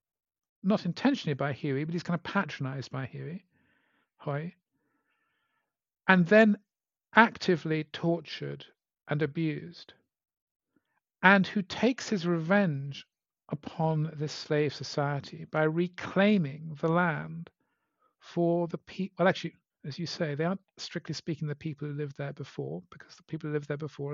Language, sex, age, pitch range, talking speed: English, male, 50-69, 150-185 Hz, 135 wpm